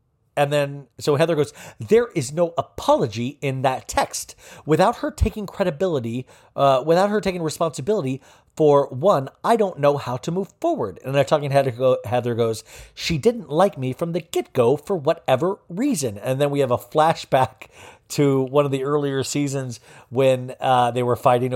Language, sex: English, male